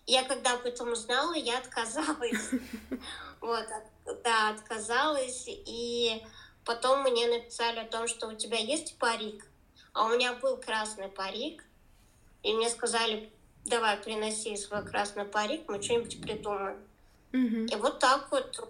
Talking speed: 130 wpm